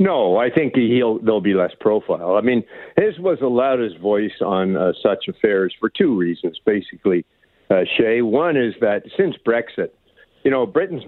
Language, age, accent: English, 60-79, American